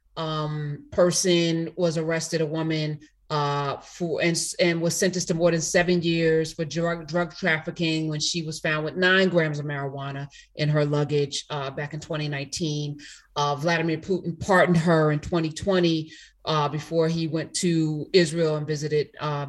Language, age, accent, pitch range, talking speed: English, 30-49, American, 150-175 Hz, 165 wpm